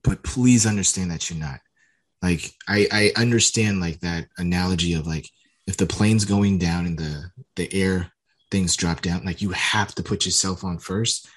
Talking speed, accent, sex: 185 wpm, American, male